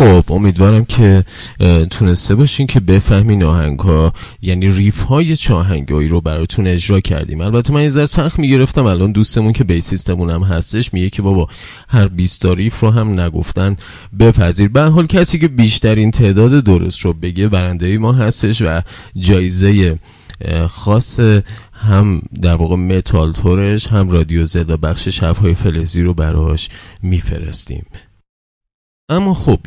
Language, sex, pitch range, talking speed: Persian, male, 85-110 Hz, 145 wpm